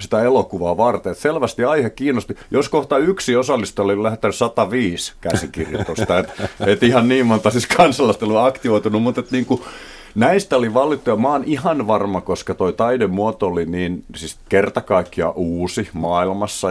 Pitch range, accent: 85-115 Hz, native